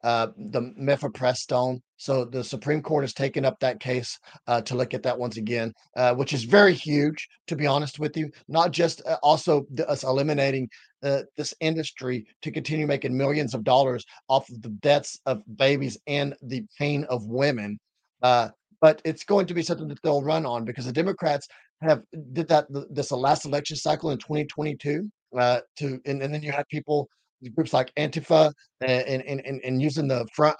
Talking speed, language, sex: 195 wpm, English, male